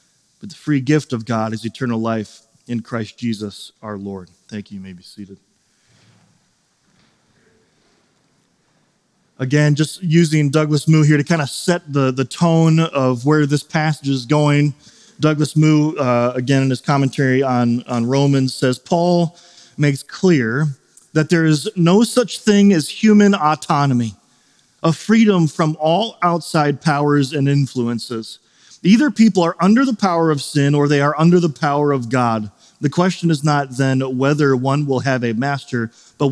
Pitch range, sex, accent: 120-155 Hz, male, American